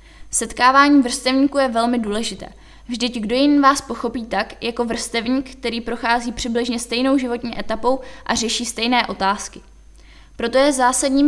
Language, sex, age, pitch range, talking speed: Czech, female, 20-39, 230-260 Hz, 140 wpm